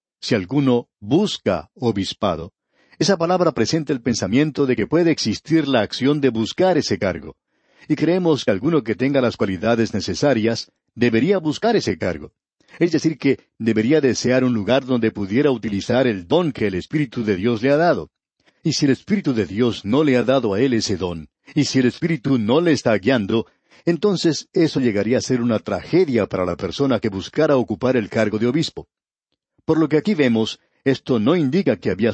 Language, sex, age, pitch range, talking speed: Spanish, male, 50-69, 110-145 Hz, 190 wpm